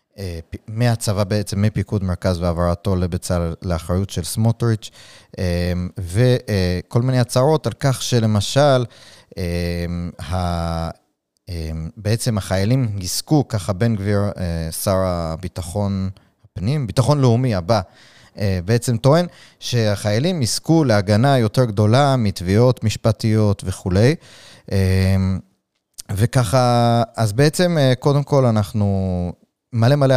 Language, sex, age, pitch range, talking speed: Hebrew, male, 30-49, 95-125 Hz, 90 wpm